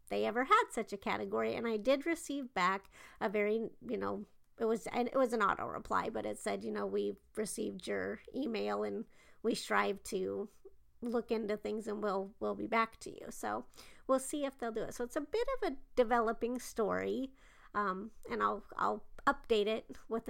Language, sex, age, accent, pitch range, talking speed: English, female, 40-59, American, 200-255 Hz, 200 wpm